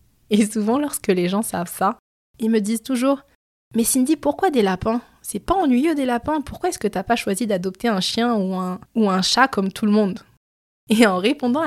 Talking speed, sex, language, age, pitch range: 225 wpm, female, French, 20-39, 180-225 Hz